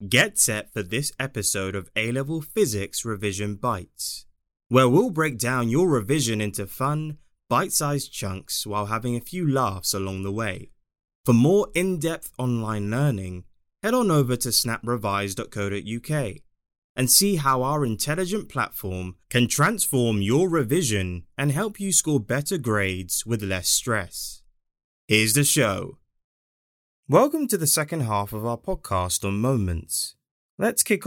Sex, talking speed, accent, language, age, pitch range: male, 140 wpm, British, English, 20-39, 95-145 Hz